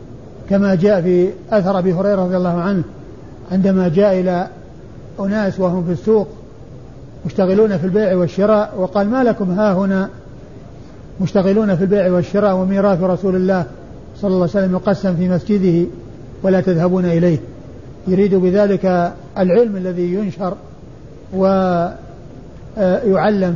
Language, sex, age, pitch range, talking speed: Arabic, male, 50-69, 175-205 Hz, 120 wpm